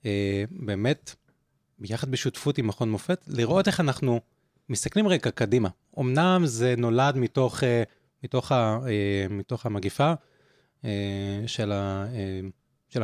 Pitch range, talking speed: 115-150 Hz, 130 wpm